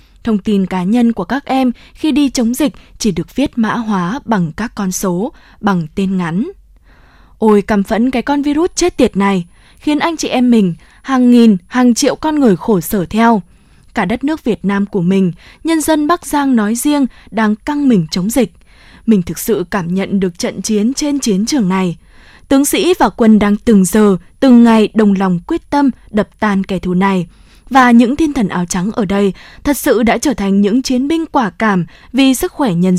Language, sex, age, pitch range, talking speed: Vietnamese, female, 20-39, 195-260 Hz, 210 wpm